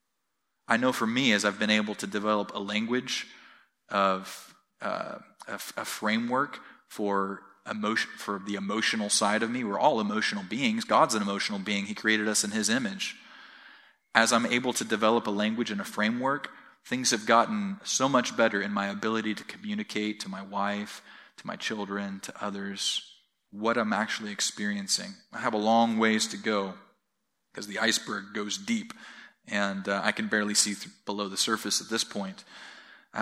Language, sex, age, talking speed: English, male, 30-49, 175 wpm